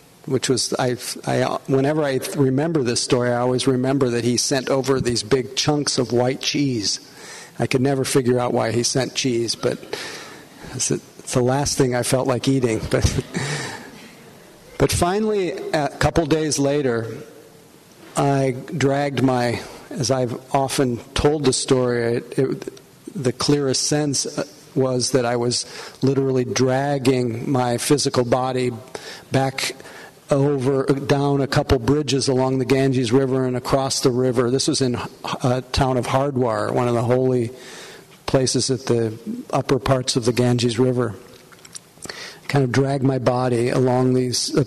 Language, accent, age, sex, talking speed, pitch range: English, American, 50-69, male, 150 wpm, 125-140 Hz